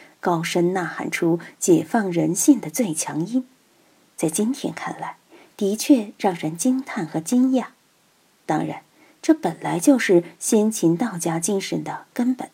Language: Chinese